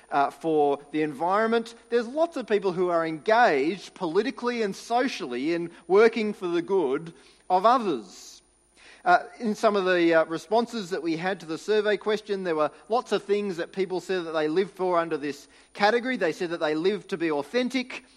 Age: 40-59